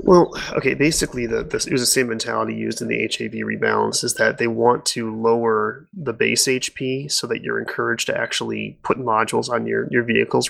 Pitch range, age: 115-135 Hz, 20-39